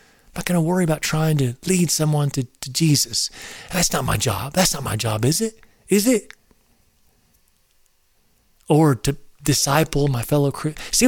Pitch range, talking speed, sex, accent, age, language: 125-170 Hz, 175 wpm, male, American, 40-59, English